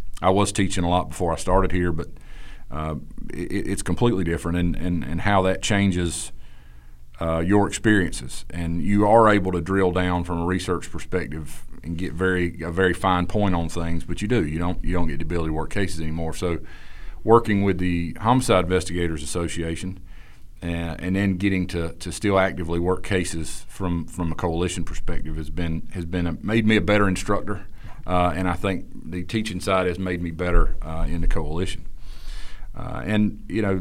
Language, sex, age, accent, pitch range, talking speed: English, male, 40-59, American, 80-95 Hz, 190 wpm